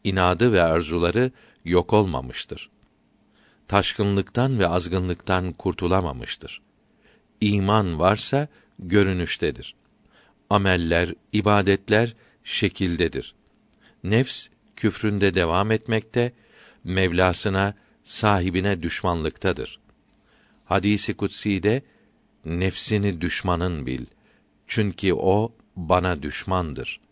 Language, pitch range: Turkish, 90-110 Hz